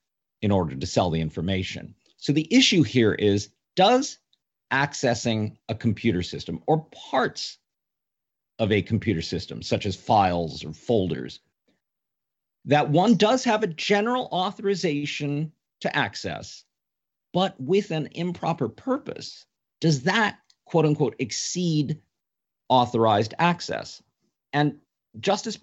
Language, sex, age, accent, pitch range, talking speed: English, male, 50-69, American, 105-155 Hz, 115 wpm